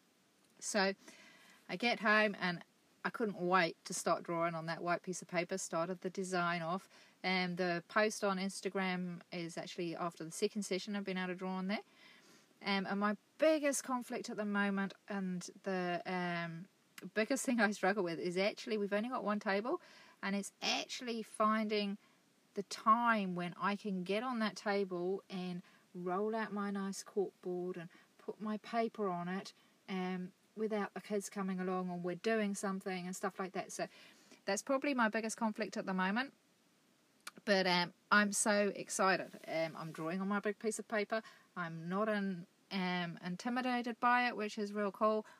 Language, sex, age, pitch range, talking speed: English, female, 30-49, 185-220 Hz, 180 wpm